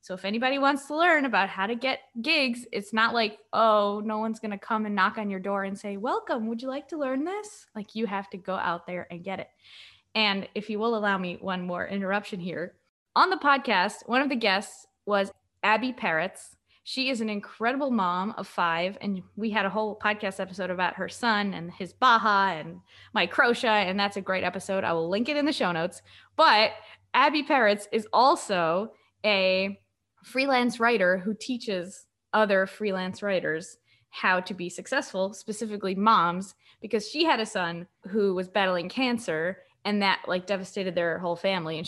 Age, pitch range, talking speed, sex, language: 20-39, 185-230 Hz, 195 wpm, female, English